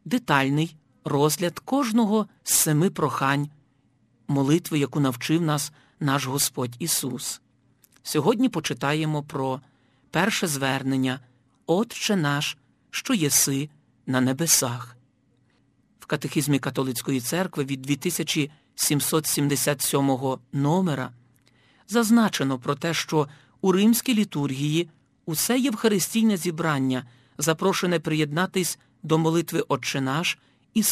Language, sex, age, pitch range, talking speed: Ukrainian, male, 50-69, 135-175 Hz, 95 wpm